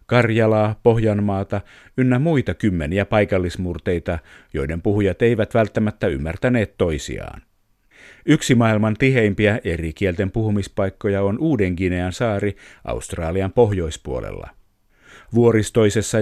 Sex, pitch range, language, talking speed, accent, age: male, 95-115 Hz, Finnish, 90 wpm, native, 50-69